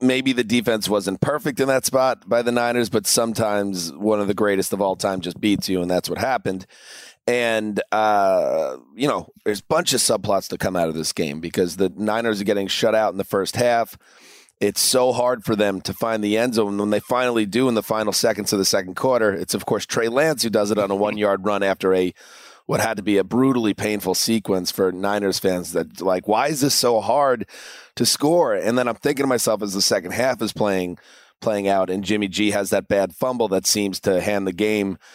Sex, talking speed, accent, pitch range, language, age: male, 235 wpm, American, 100-115 Hz, English, 30-49